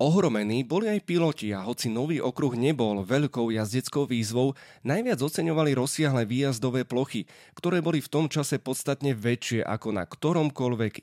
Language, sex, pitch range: Slovak, male, 115-150 Hz